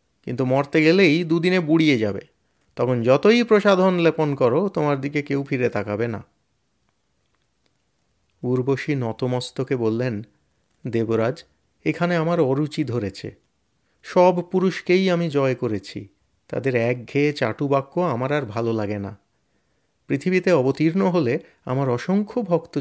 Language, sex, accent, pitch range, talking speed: Bengali, male, native, 120-175 Hz, 100 wpm